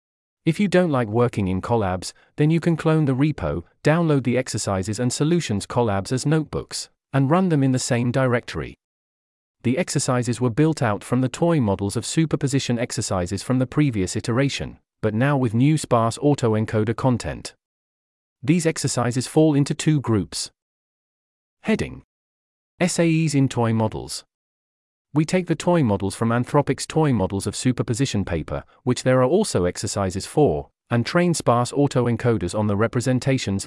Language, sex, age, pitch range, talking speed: English, male, 40-59, 105-145 Hz, 155 wpm